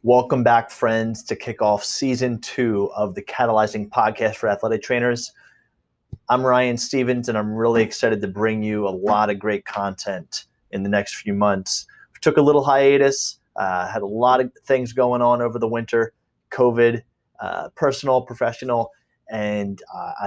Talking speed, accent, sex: 165 wpm, American, male